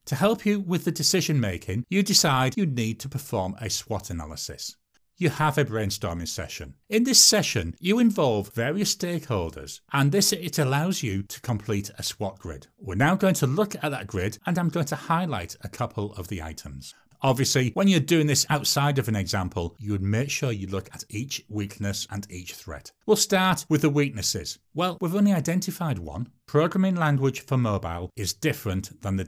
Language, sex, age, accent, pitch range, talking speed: English, male, 40-59, British, 100-165 Hz, 195 wpm